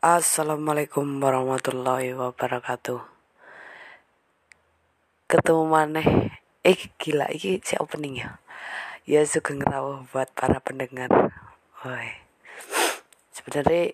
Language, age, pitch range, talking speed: Indonesian, 20-39, 135-155 Hz, 80 wpm